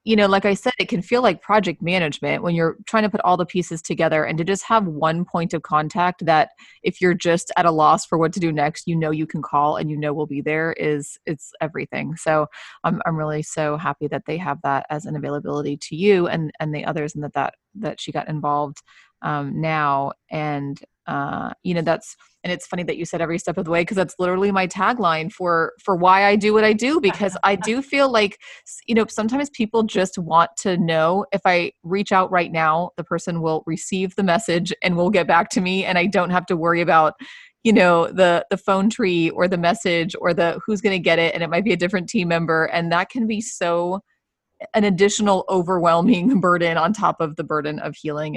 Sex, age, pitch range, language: female, 30-49, 160-195 Hz, English